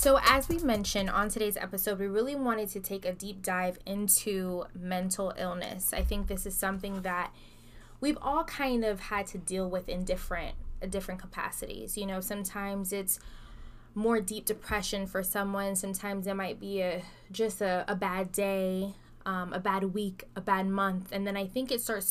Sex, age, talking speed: female, 10-29, 185 wpm